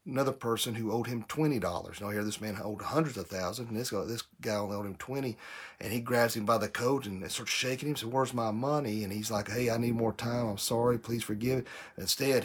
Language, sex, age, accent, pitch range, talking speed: English, male, 40-59, American, 105-120 Hz, 250 wpm